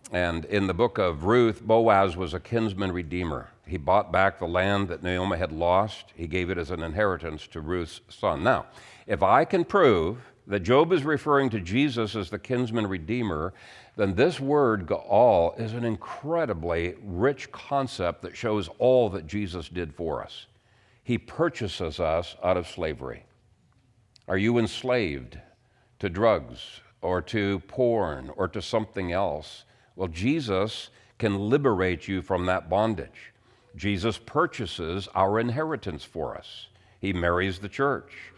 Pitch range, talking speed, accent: 95-125 Hz, 150 wpm, American